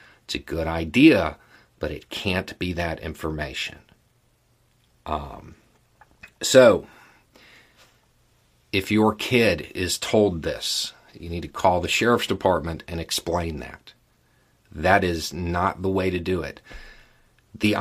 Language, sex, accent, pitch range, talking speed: English, male, American, 85-110 Hz, 125 wpm